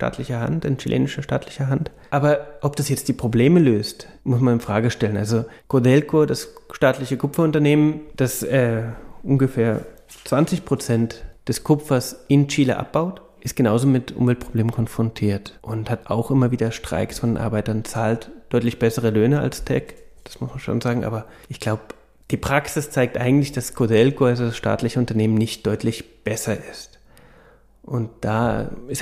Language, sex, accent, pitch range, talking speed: German, male, German, 115-140 Hz, 160 wpm